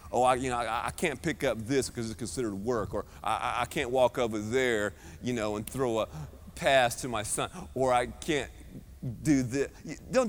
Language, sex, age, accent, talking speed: English, male, 30-49, American, 210 wpm